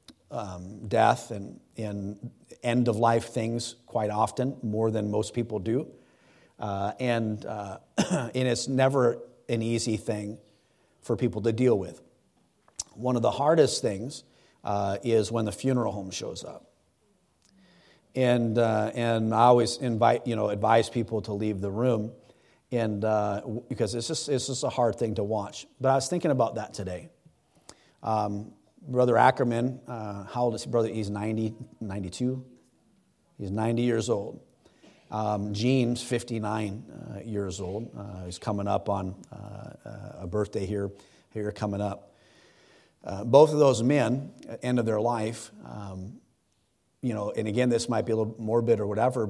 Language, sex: English, male